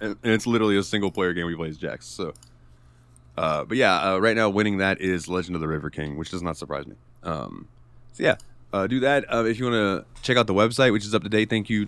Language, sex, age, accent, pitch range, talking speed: English, male, 20-39, American, 95-120 Hz, 270 wpm